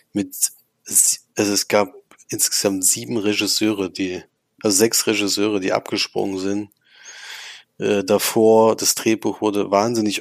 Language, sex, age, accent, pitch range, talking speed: German, male, 20-39, German, 100-110 Hz, 120 wpm